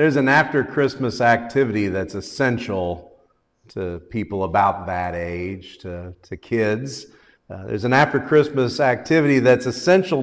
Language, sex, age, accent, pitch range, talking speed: English, male, 40-59, American, 115-160 Hz, 135 wpm